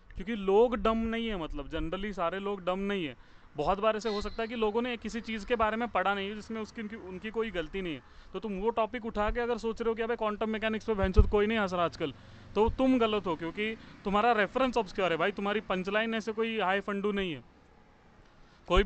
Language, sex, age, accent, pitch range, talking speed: Hindi, male, 30-49, native, 165-220 Hz, 240 wpm